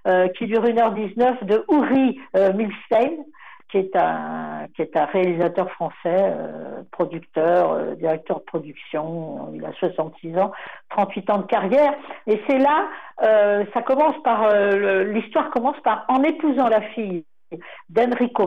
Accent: French